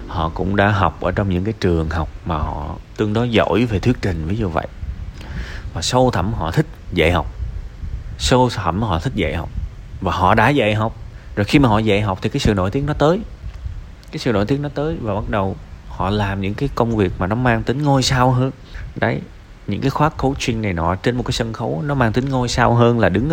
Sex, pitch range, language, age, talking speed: male, 90-125 Hz, Vietnamese, 20-39, 240 wpm